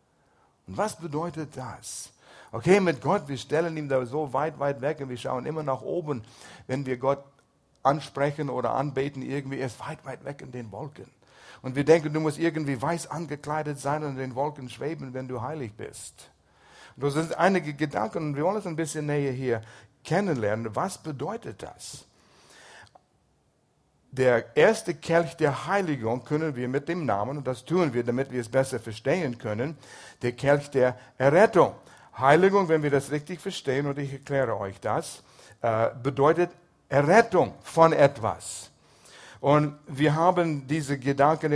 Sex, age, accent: male, 60-79, German